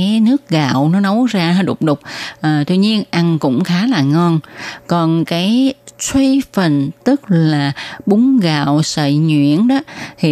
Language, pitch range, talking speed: Vietnamese, 150-195 Hz, 155 wpm